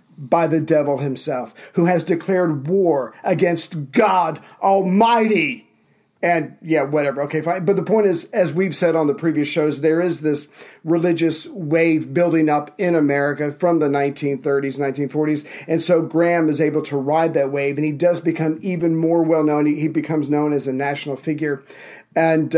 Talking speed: 170 wpm